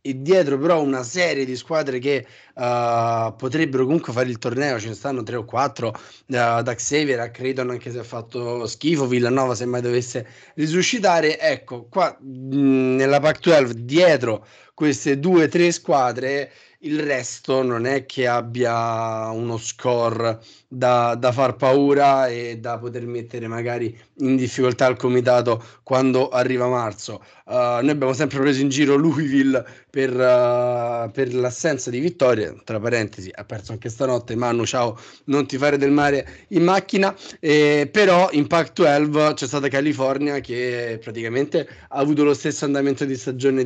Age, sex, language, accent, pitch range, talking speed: 30-49, male, Italian, native, 120-145 Hz, 160 wpm